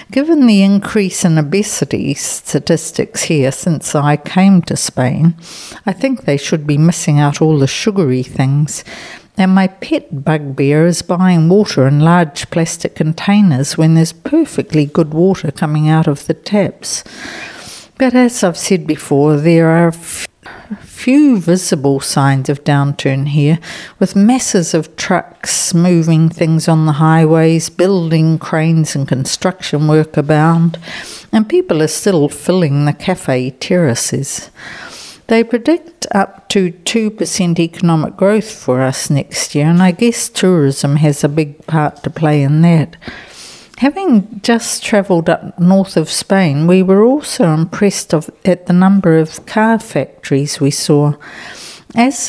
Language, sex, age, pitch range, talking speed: English, female, 60-79, 150-195 Hz, 140 wpm